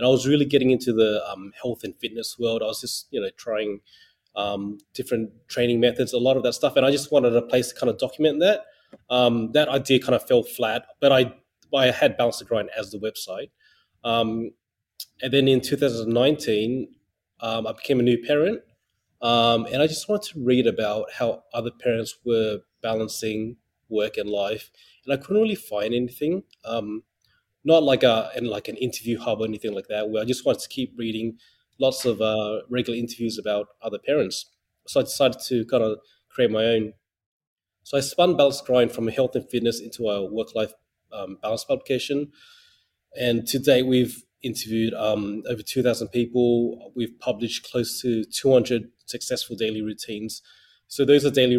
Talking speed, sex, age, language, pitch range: 185 wpm, male, 20-39, English, 110-130 Hz